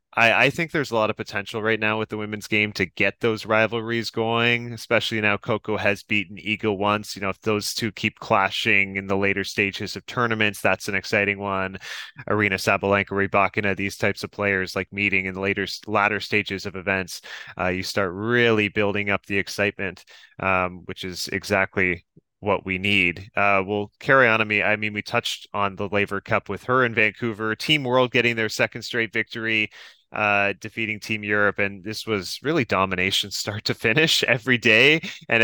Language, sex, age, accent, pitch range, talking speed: English, male, 20-39, American, 100-115 Hz, 190 wpm